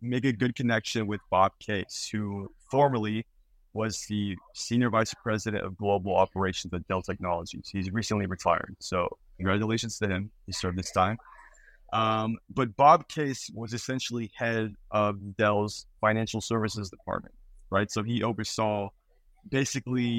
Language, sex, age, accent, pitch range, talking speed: English, male, 20-39, American, 95-115 Hz, 145 wpm